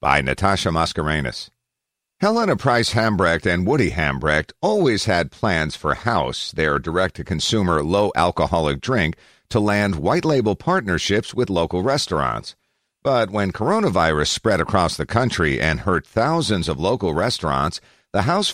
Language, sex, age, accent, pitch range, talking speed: English, male, 50-69, American, 85-125 Hz, 130 wpm